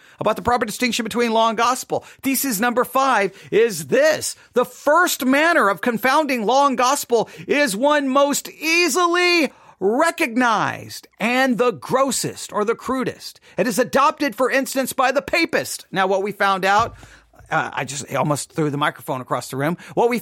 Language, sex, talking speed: English, male, 165 wpm